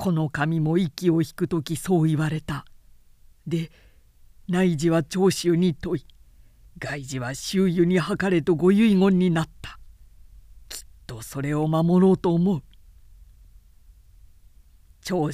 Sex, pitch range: female, 130-180 Hz